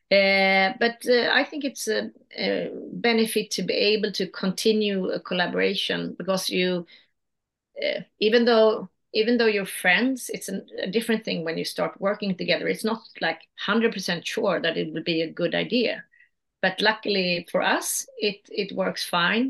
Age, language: 30-49, English